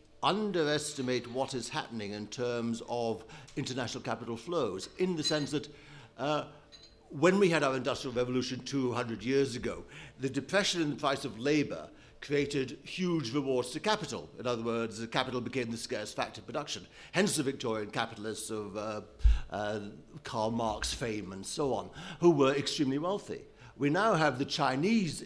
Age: 60-79